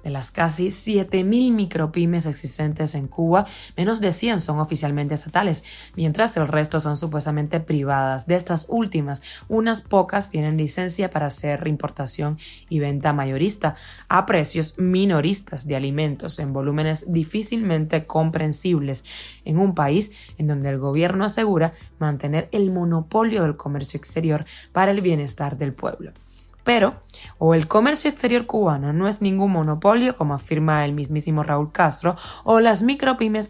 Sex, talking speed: female, 145 wpm